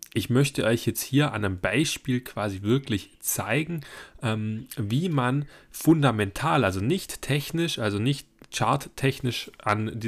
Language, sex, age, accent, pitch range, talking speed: German, male, 10-29, German, 105-135 Hz, 130 wpm